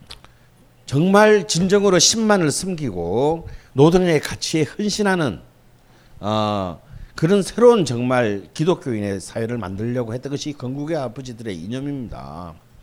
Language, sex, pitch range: Korean, male, 120-185 Hz